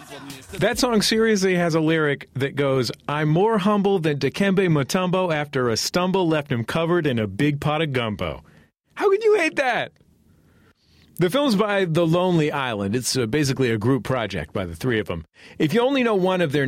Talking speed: 200 wpm